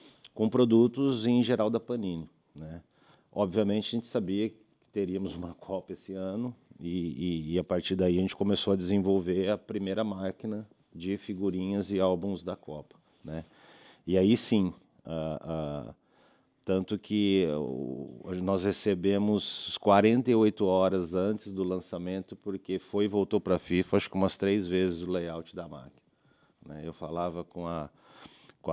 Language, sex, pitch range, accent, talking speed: Portuguese, male, 85-105 Hz, Brazilian, 155 wpm